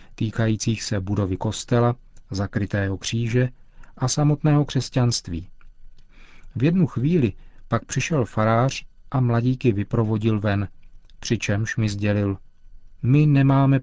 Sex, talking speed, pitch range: male, 105 wpm, 105-130 Hz